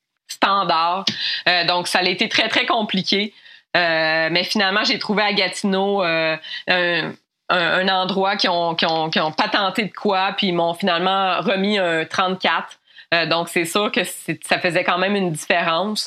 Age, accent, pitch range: 30-49, Canadian, 170-200 Hz